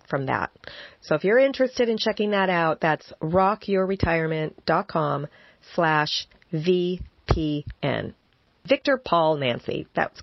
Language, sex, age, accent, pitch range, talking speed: English, female, 40-59, American, 160-230 Hz, 105 wpm